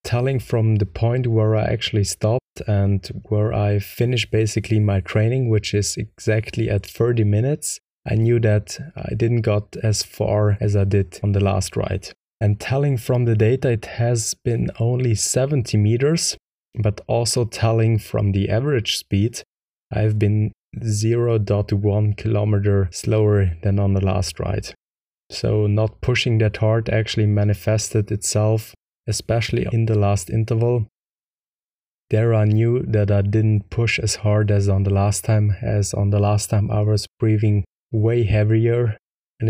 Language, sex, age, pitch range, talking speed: English, male, 20-39, 100-115 Hz, 155 wpm